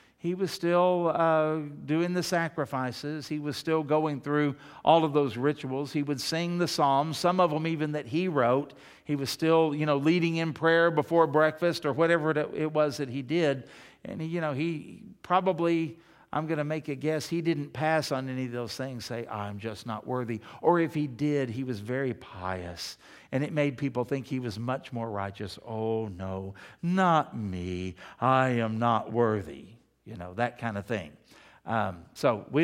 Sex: male